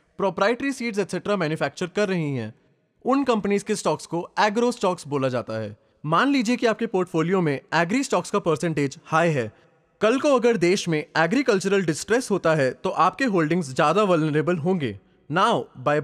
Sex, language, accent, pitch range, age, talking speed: male, English, Indian, 145-210 Hz, 20-39, 145 wpm